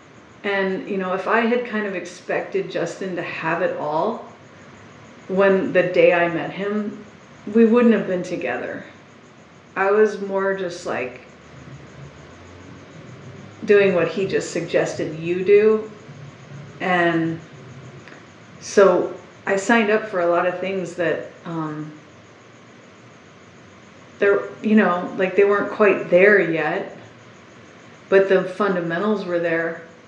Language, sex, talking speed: English, female, 125 wpm